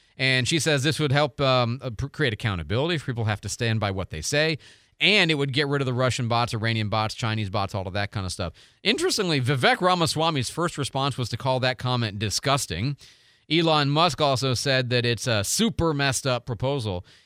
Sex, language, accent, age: male, English, American, 40-59